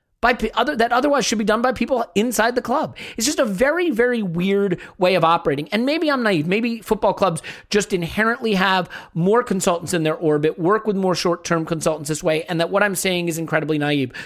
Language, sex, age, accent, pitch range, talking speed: English, male, 40-59, American, 160-205 Hz, 215 wpm